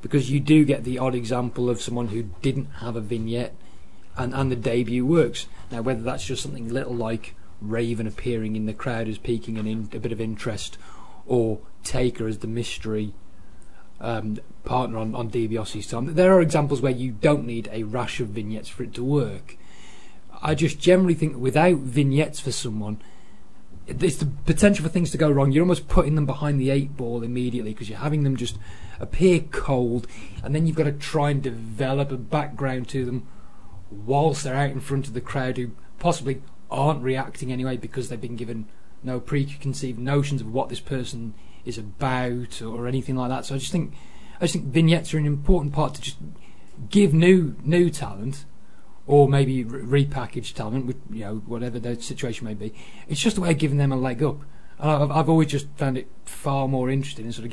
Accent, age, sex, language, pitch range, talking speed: British, 30-49, male, English, 115-145 Hz, 200 wpm